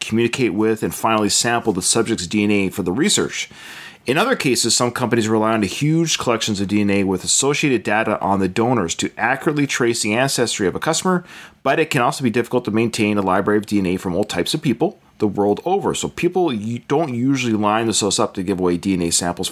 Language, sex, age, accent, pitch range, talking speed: English, male, 30-49, American, 100-140 Hz, 210 wpm